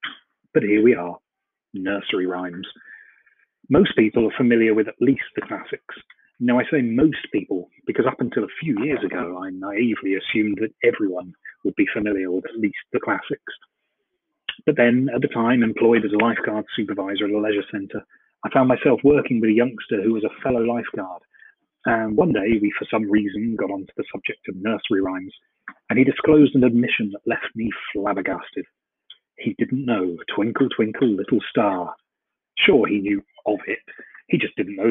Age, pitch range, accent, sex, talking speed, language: 30-49, 100-125 Hz, British, male, 180 wpm, English